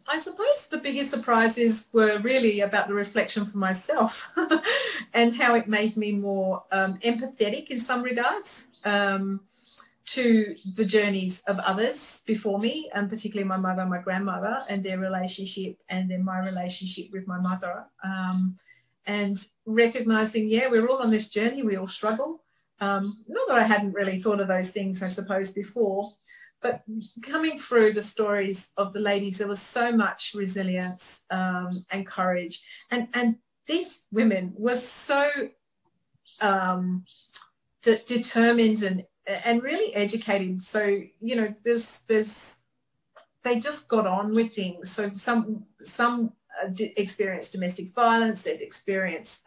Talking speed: 145 wpm